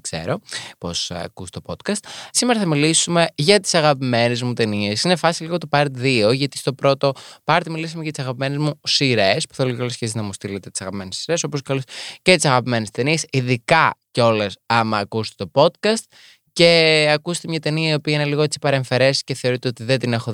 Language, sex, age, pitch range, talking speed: Greek, male, 20-39, 125-165 Hz, 195 wpm